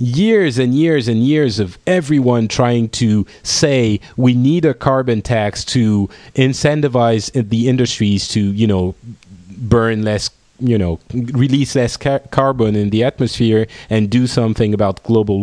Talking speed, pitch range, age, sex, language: 150 wpm, 105-145 Hz, 30-49, male, English